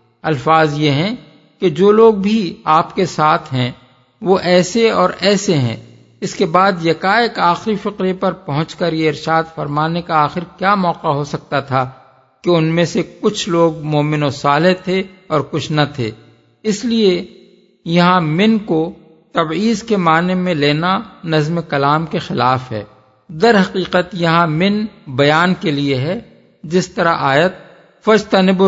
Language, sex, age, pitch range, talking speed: Urdu, male, 50-69, 150-190 Hz, 160 wpm